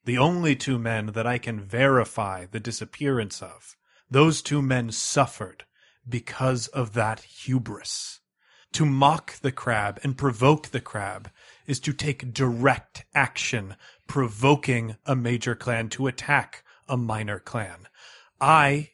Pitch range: 120-145 Hz